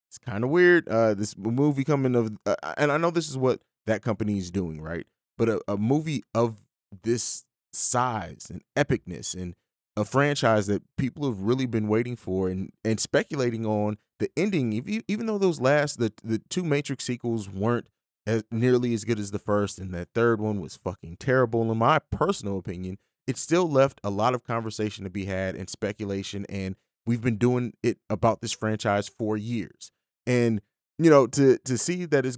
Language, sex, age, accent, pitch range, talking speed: English, male, 30-49, American, 100-130 Hz, 195 wpm